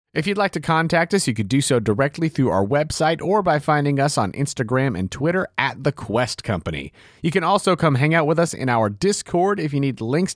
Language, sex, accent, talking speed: English, male, American, 240 wpm